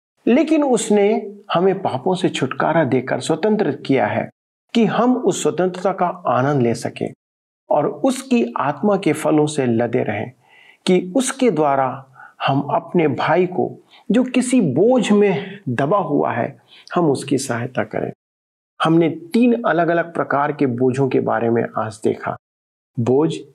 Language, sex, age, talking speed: Hindi, male, 50-69, 145 wpm